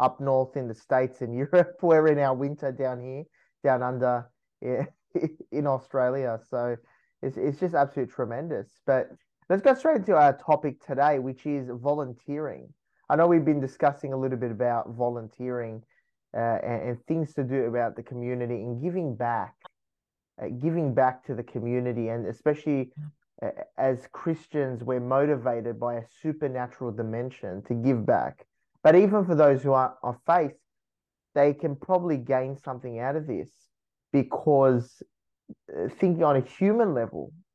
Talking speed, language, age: 160 wpm, English, 20-39